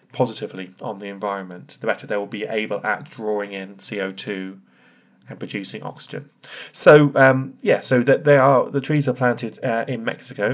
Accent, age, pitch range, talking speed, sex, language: British, 30-49, 100-140 Hz, 175 wpm, male, English